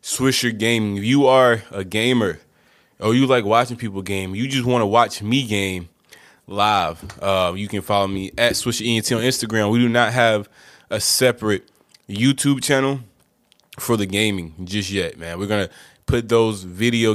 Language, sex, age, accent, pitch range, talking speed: English, male, 20-39, American, 95-115 Hz, 180 wpm